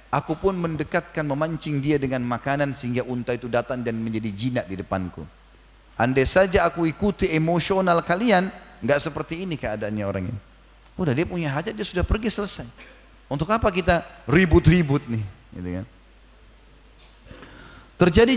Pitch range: 125-175 Hz